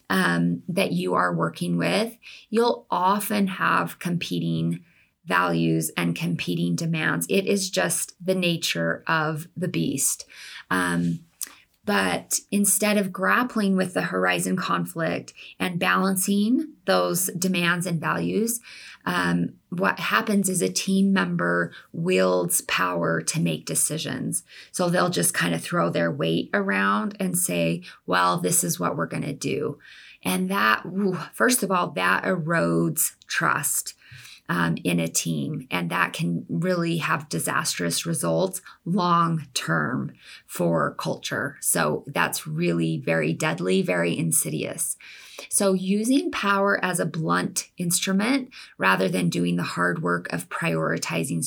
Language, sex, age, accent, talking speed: English, female, 20-39, American, 130 wpm